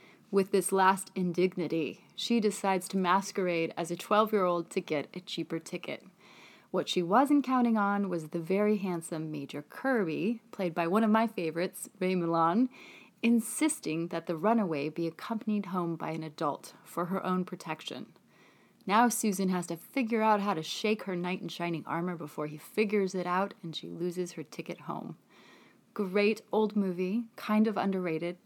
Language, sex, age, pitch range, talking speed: English, female, 30-49, 175-215 Hz, 170 wpm